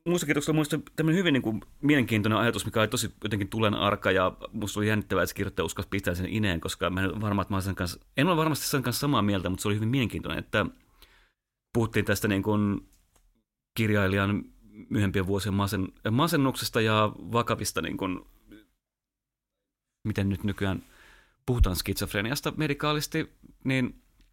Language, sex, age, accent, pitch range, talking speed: Finnish, male, 30-49, native, 100-125 Hz, 160 wpm